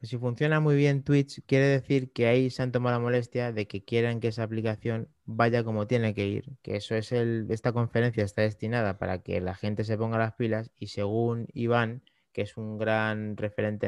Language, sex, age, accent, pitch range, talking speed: Spanish, male, 30-49, Spanish, 105-125 Hz, 210 wpm